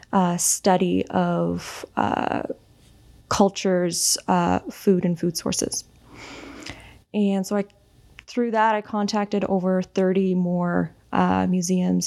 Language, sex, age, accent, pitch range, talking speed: English, female, 20-39, American, 170-200 Hz, 105 wpm